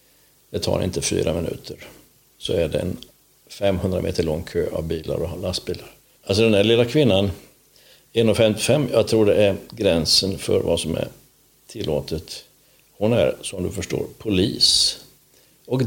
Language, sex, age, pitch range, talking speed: Swedish, male, 60-79, 95-125 Hz, 150 wpm